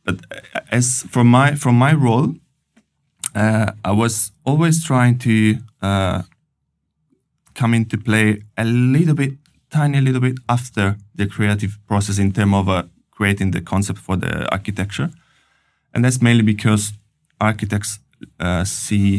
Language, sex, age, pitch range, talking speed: English, male, 20-39, 95-115 Hz, 140 wpm